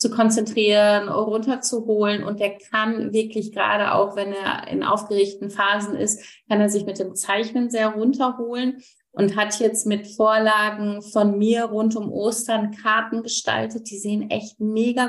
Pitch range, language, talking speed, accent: 205-235 Hz, German, 155 wpm, German